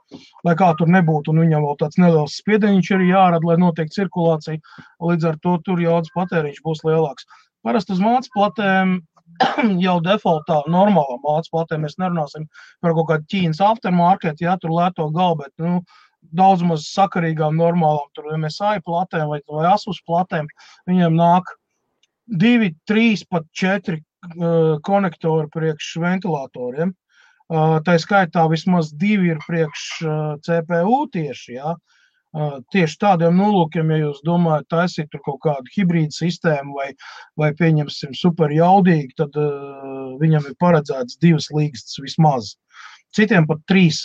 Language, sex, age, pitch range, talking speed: English, male, 30-49, 155-185 Hz, 140 wpm